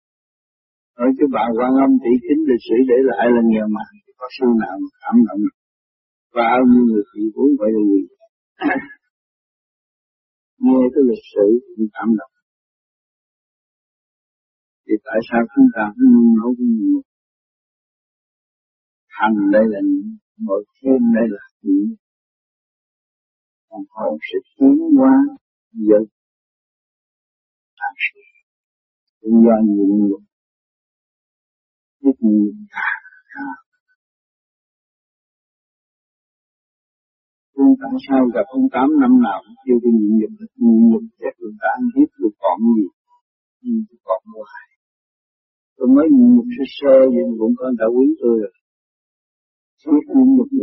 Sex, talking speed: male, 50 wpm